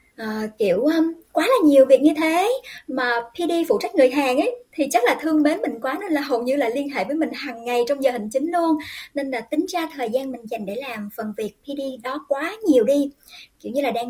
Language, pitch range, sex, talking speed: Vietnamese, 235-305 Hz, male, 255 wpm